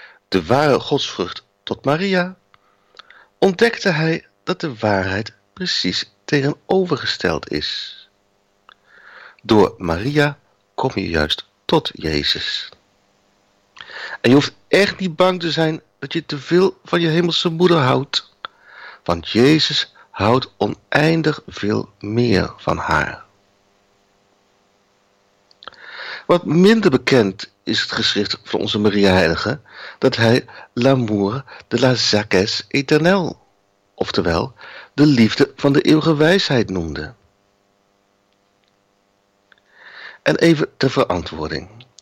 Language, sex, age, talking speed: Dutch, male, 50-69, 105 wpm